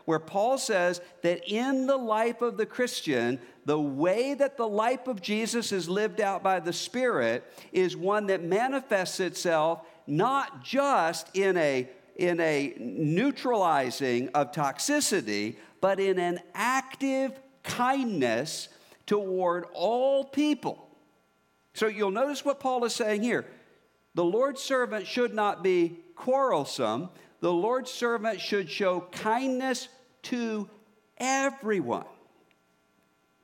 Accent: American